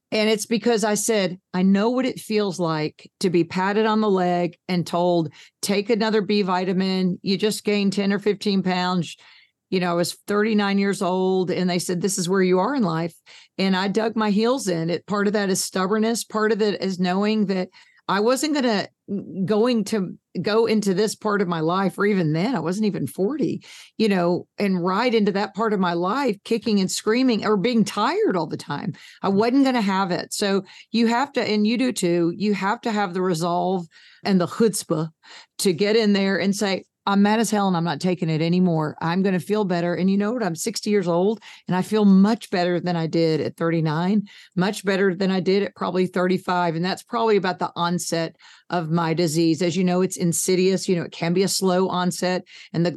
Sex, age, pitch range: female, 50-69, 180-215 Hz